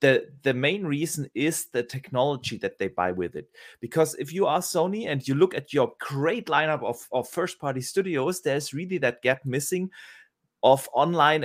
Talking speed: 190 wpm